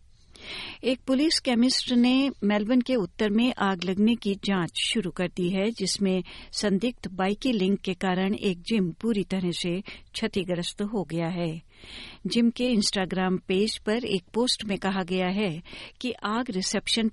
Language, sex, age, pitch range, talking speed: Hindi, female, 60-79, 185-230 Hz, 155 wpm